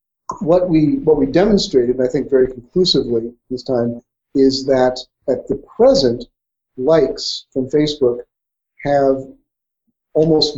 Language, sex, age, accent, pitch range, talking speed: English, male, 50-69, American, 125-150 Hz, 125 wpm